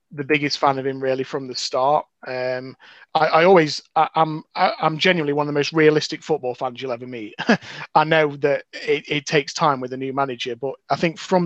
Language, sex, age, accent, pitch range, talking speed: English, male, 30-49, British, 125-155 Hz, 225 wpm